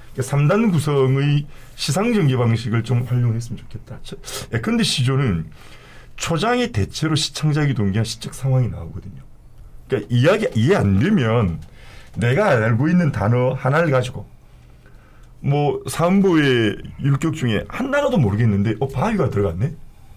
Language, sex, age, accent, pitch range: Korean, male, 40-59, native, 110-155 Hz